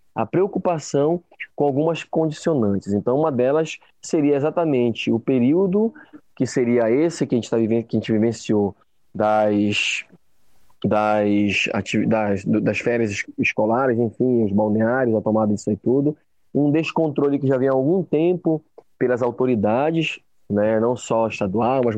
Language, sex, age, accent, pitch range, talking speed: Portuguese, male, 20-39, Brazilian, 110-140 Hz, 145 wpm